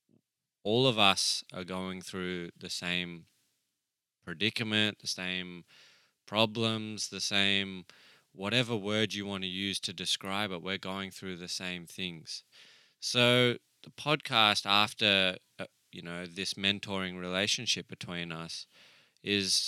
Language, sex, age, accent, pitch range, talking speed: English, male, 20-39, Australian, 90-105 Hz, 130 wpm